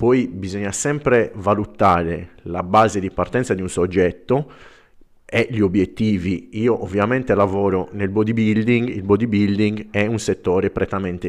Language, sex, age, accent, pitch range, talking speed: Italian, male, 30-49, native, 90-110 Hz, 135 wpm